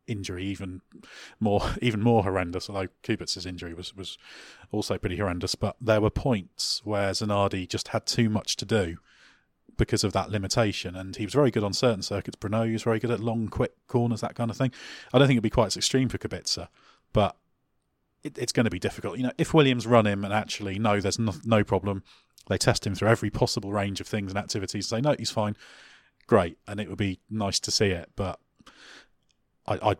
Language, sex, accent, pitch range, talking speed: English, male, British, 95-115 Hz, 215 wpm